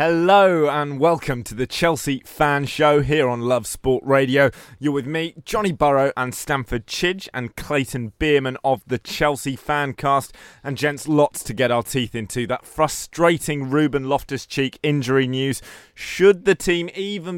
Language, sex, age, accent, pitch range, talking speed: English, male, 20-39, British, 130-155 Hz, 160 wpm